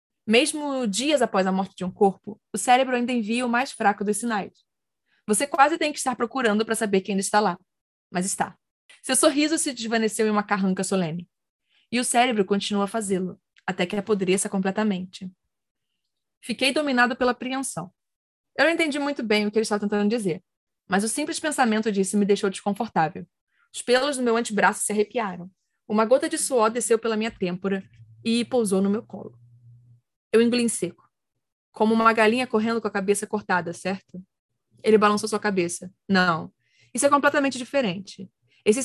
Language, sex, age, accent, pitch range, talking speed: Portuguese, female, 20-39, Brazilian, 190-235 Hz, 180 wpm